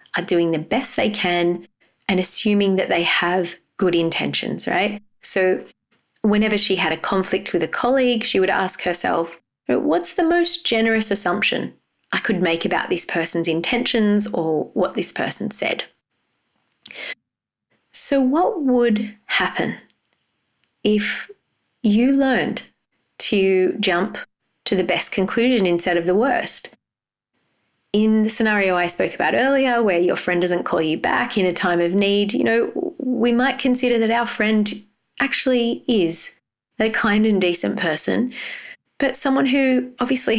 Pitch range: 180-235 Hz